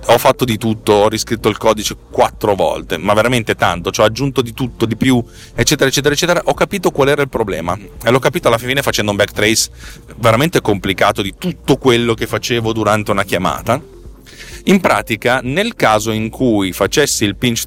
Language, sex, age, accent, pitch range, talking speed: Italian, male, 30-49, native, 105-130 Hz, 190 wpm